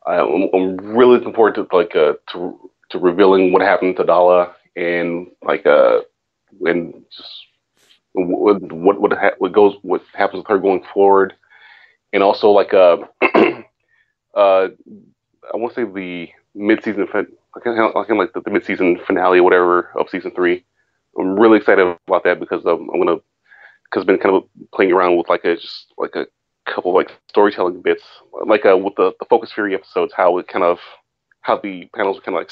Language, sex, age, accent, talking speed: English, male, 30-49, American, 190 wpm